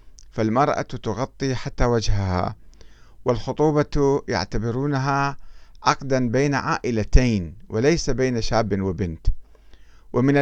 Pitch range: 100-140 Hz